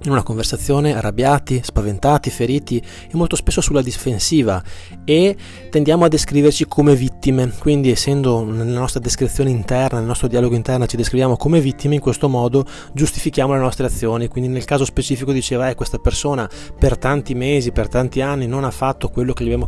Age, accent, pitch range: 20-39, native, 110-140 Hz